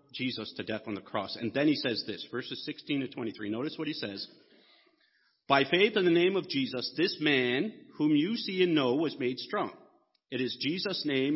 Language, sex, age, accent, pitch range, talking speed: English, male, 50-69, American, 130-180 Hz, 210 wpm